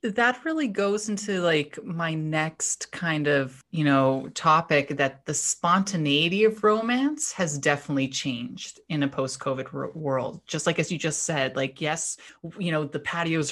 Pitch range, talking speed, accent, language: 145-195 Hz, 175 wpm, American, English